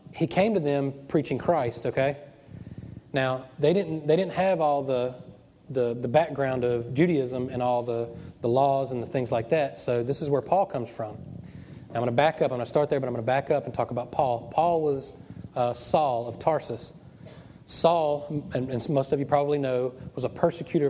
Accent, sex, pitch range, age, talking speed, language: American, male, 125-150 Hz, 30-49, 215 wpm, English